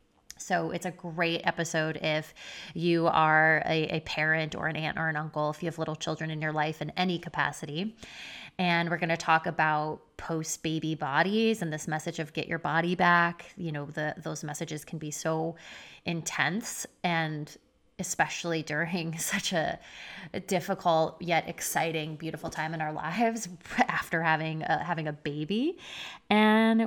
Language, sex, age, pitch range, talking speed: English, female, 20-39, 155-180 Hz, 165 wpm